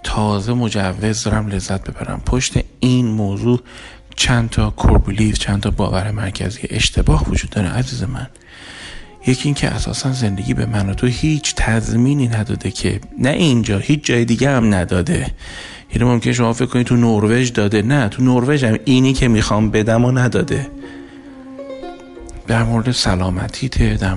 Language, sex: Persian, male